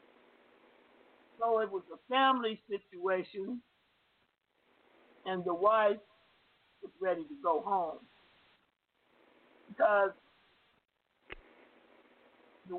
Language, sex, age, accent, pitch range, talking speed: English, male, 60-79, American, 190-230 Hz, 75 wpm